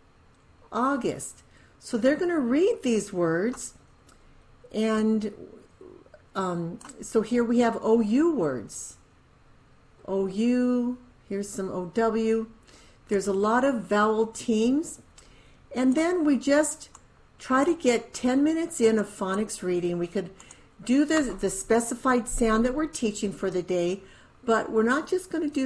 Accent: American